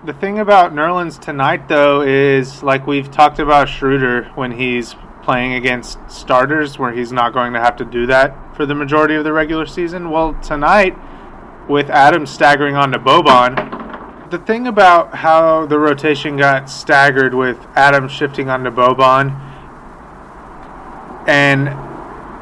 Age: 30-49